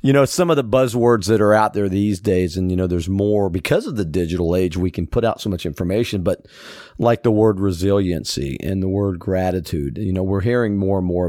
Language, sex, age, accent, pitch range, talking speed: English, male, 40-59, American, 90-110 Hz, 240 wpm